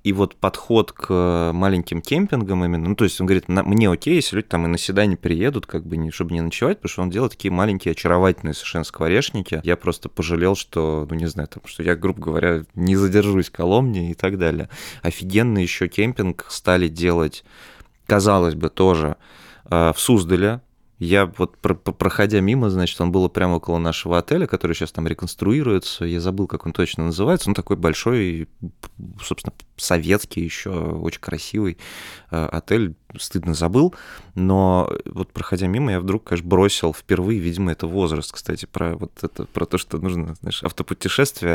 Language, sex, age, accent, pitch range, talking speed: Russian, male, 20-39, native, 85-100 Hz, 160 wpm